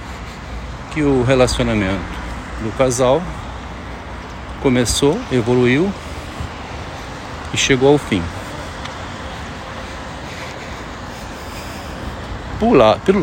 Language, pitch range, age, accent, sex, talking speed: Portuguese, 105-135 Hz, 60-79, Brazilian, male, 55 wpm